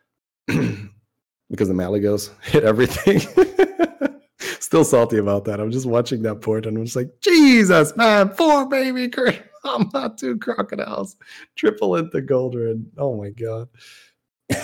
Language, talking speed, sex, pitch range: English, 135 wpm, male, 100-120 Hz